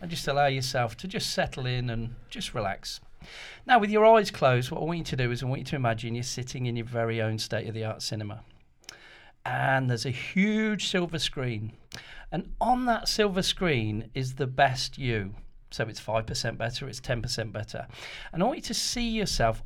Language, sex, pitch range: English, male, 115-170 Hz